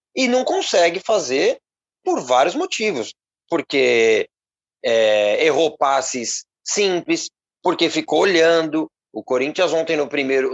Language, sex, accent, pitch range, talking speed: Portuguese, male, Brazilian, 120-200 Hz, 115 wpm